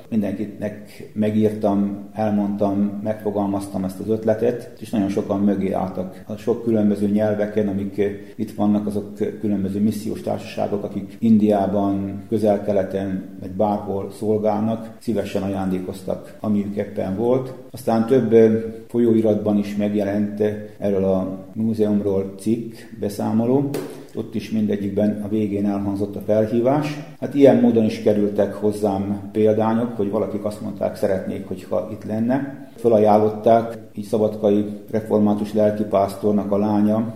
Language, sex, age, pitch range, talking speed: Hungarian, male, 40-59, 100-110 Hz, 120 wpm